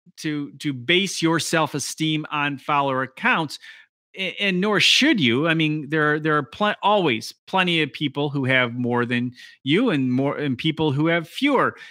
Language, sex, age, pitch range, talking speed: English, male, 30-49, 135-180 Hz, 180 wpm